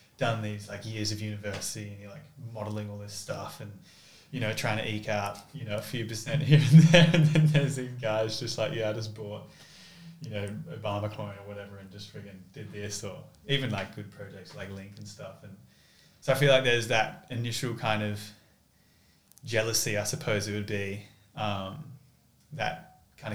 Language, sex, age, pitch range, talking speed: English, male, 20-39, 105-130 Hz, 200 wpm